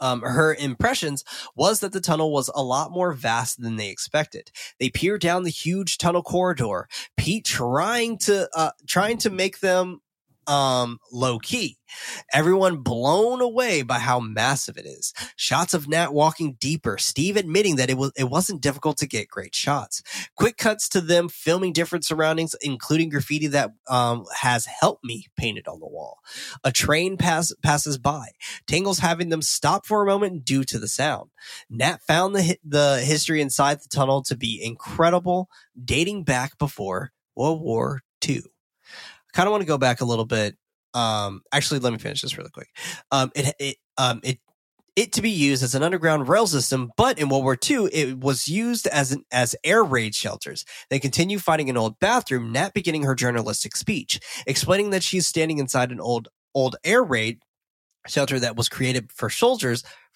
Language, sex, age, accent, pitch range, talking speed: English, male, 20-39, American, 130-175 Hz, 180 wpm